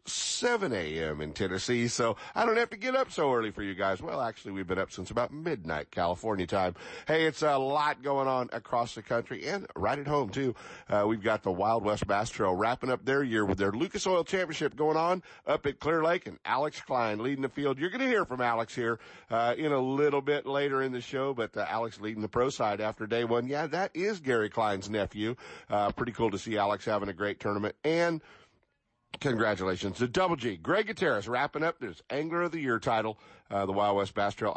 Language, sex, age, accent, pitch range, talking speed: English, male, 50-69, American, 105-155 Hz, 225 wpm